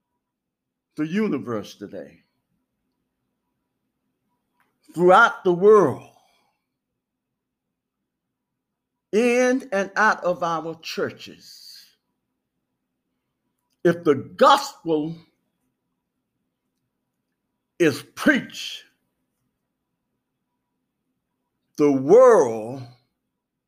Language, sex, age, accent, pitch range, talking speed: English, male, 60-79, American, 135-195 Hz, 50 wpm